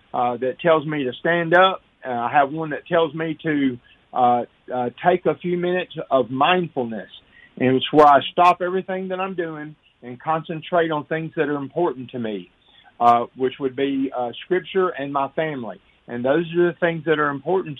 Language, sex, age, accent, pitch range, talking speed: English, male, 50-69, American, 125-165 Hz, 195 wpm